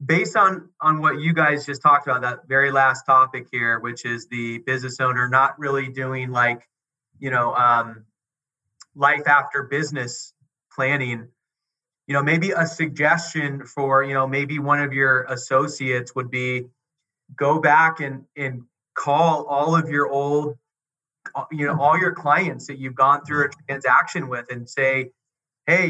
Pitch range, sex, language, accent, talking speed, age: 130-155 Hz, male, English, American, 160 wpm, 30-49